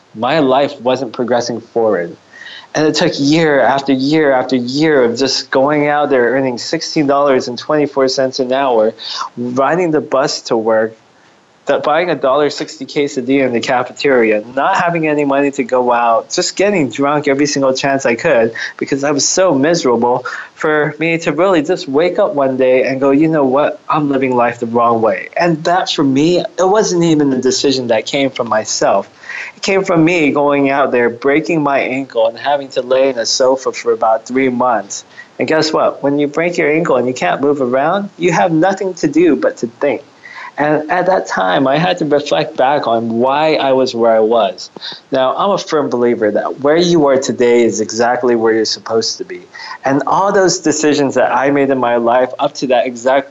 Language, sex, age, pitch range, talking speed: English, male, 20-39, 125-155 Hz, 200 wpm